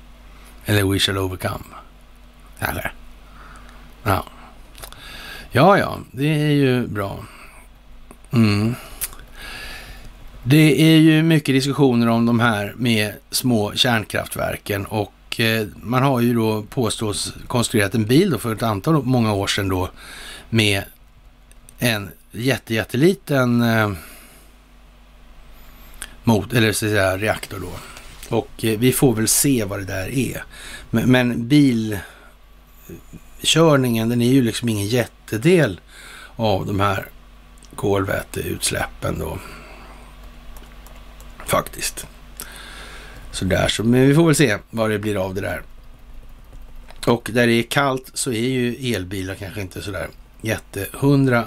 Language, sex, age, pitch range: Swedish, male, 60-79, 100-125 Hz